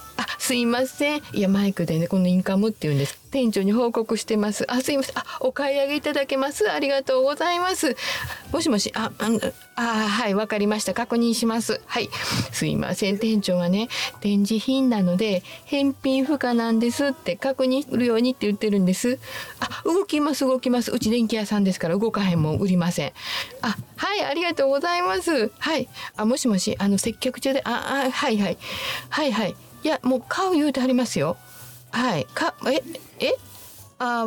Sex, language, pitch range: female, Japanese, 210-275 Hz